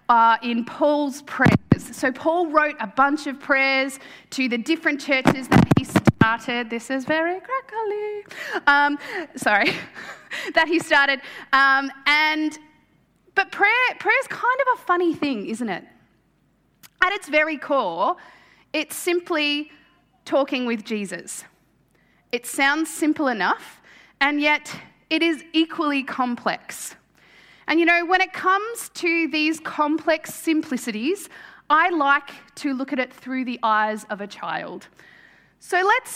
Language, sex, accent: English, female, Australian